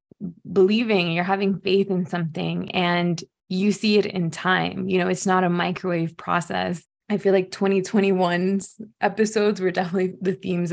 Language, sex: English, female